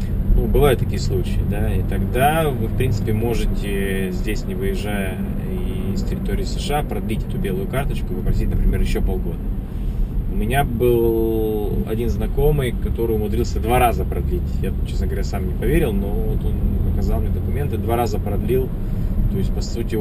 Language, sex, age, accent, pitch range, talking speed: Russian, male, 20-39, native, 95-115 Hz, 160 wpm